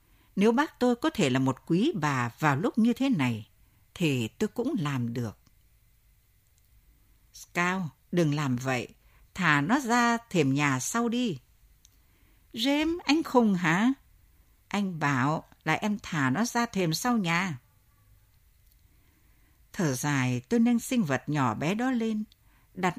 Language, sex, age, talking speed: Vietnamese, female, 60-79, 145 wpm